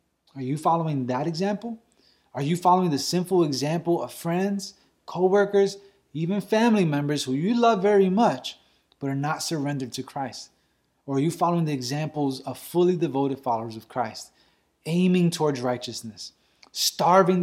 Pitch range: 140-180 Hz